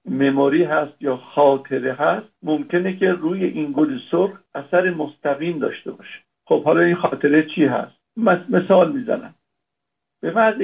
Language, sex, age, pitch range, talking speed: Persian, male, 60-79, 150-200 Hz, 140 wpm